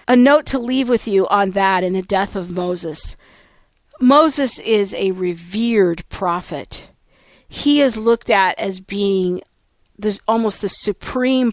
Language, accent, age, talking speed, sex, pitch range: English, American, 40-59, 145 wpm, female, 185-235 Hz